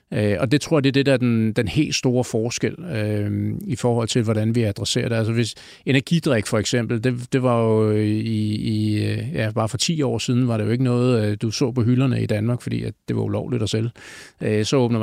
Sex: male